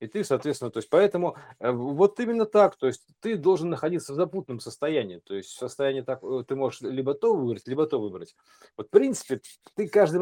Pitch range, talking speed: 125-175 Hz, 200 wpm